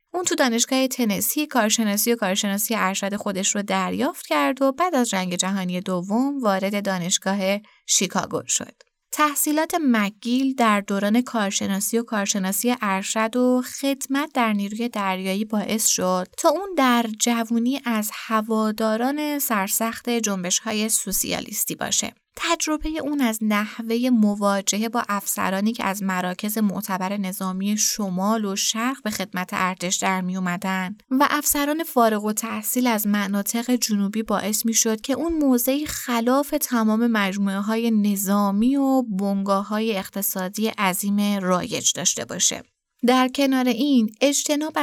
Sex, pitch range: female, 200-250 Hz